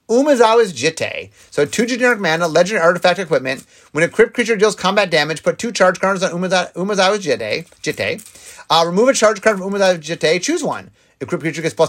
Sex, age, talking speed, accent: male, 30-49, 190 wpm, American